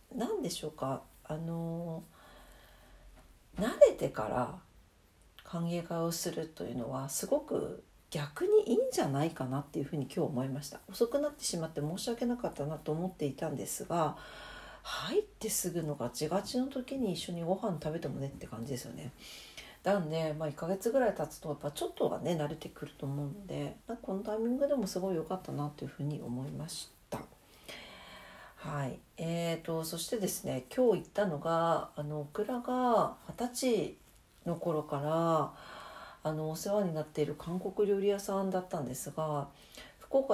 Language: Japanese